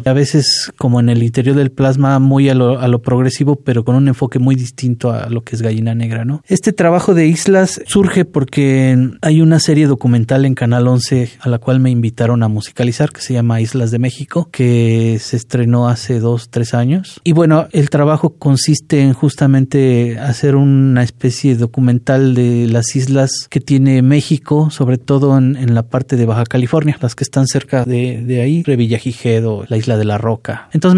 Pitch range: 120-145 Hz